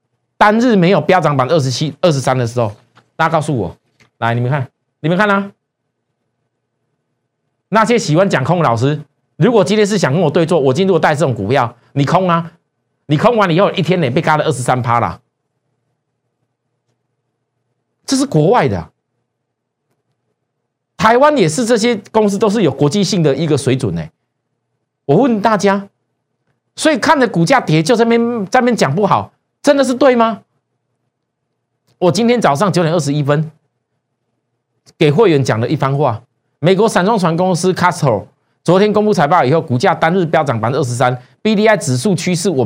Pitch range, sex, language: 125-195 Hz, male, Chinese